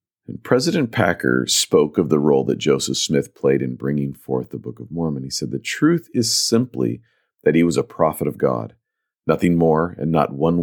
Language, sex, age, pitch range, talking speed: English, male, 40-59, 70-85 Hz, 205 wpm